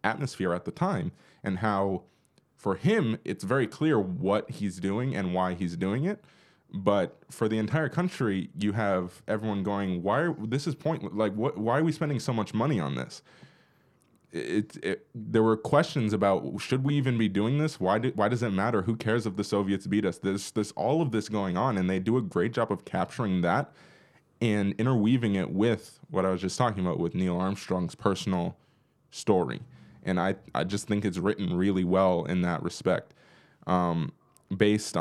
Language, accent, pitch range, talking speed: English, American, 95-130 Hz, 195 wpm